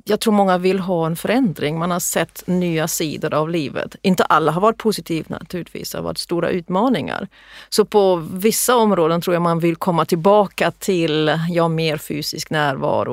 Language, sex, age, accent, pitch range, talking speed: Swedish, female, 40-59, native, 175-215 Hz, 185 wpm